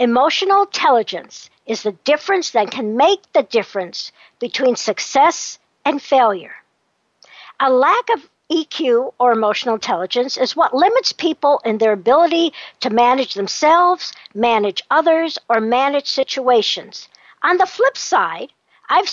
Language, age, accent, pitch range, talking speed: English, 60-79, American, 240-355 Hz, 130 wpm